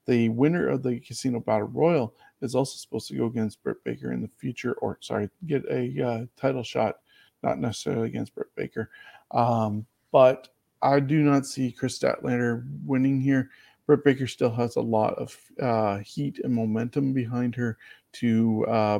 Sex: male